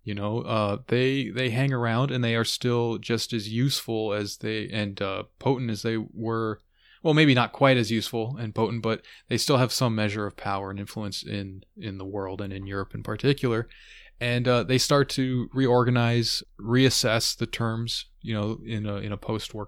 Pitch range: 105-120 Hz